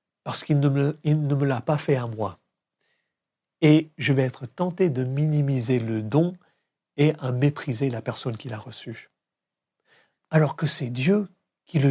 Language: French